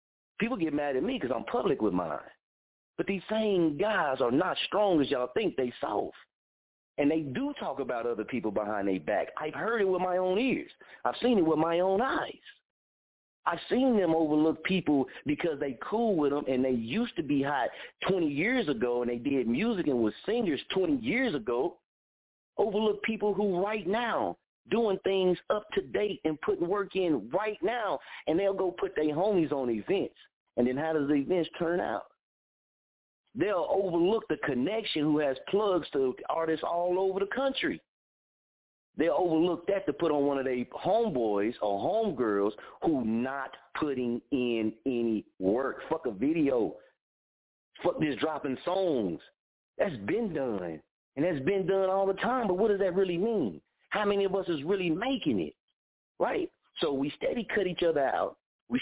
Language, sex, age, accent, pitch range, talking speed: English, male, 40-59, American, 140-210 Hz, 180 wpm